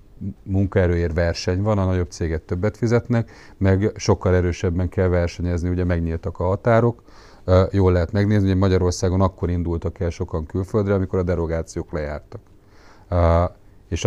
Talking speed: 135 wpm